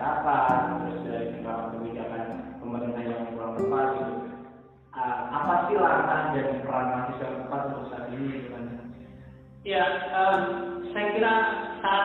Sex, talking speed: male, 120 wpm